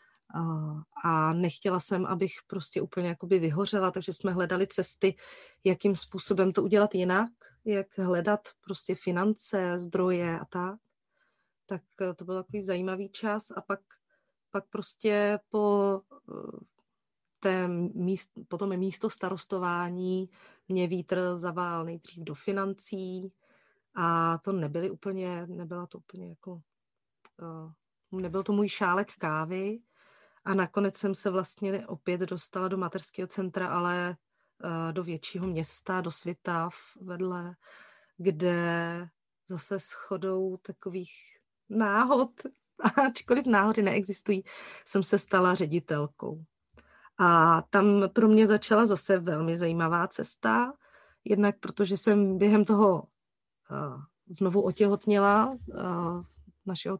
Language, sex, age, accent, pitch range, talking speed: Czech, female, 30-49, native, 175-200 Hz, 110 wpm